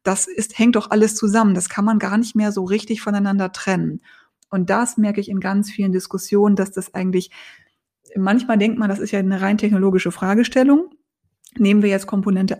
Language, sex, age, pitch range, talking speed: German, female, 20-39, 190-215 Hz, 195 wpm